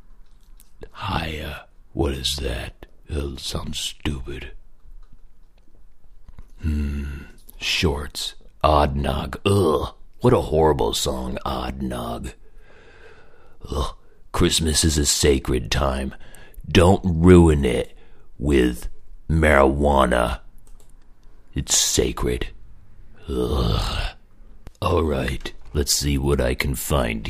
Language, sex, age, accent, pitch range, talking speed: English, male, 60-79, American, 70-90 Hz, 85 wpm